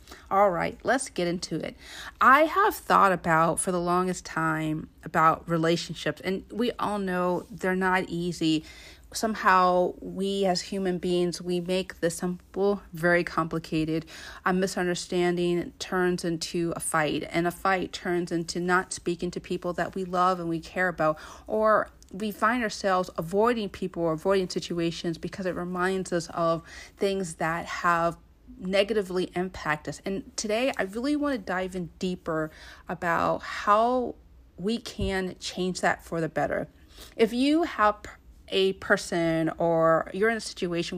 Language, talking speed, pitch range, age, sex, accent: English, 150 wpm, 170-205 Hz, 40-59, female, American